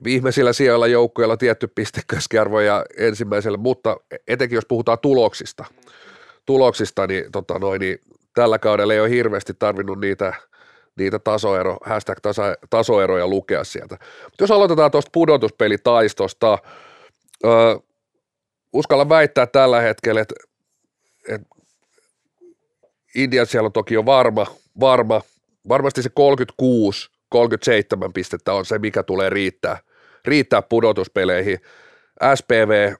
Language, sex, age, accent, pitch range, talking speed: Finnish, male, 30-49, native, 105-135 Hz, 105 wpm